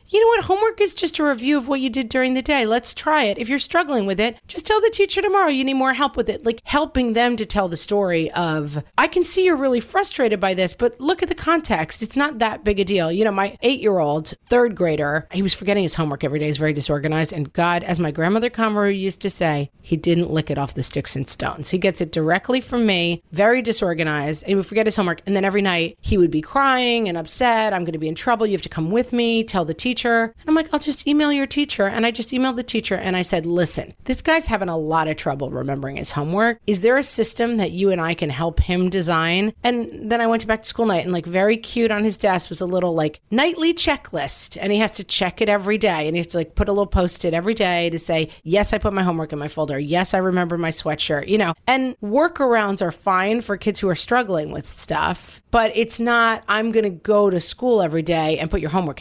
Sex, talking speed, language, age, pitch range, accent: female, 260 wpm, English, 40-59, 170-240 Hz, American